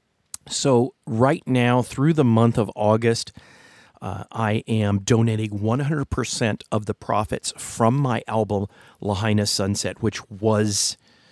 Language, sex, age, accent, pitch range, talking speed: English, male, 40-59, American, 105-125 Hz, 120 wpm